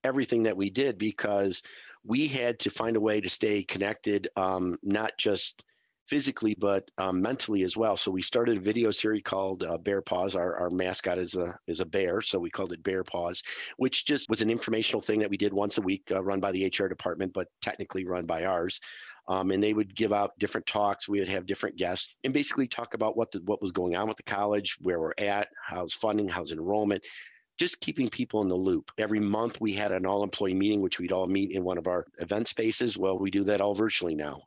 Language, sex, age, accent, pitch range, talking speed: English, male, 50-69, American, 95-110 Hz, 230 wpm